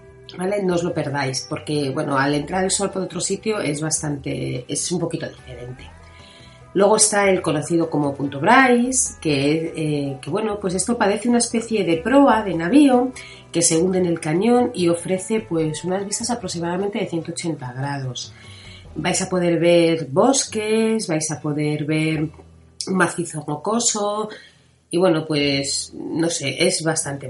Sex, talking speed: female, 165 wpm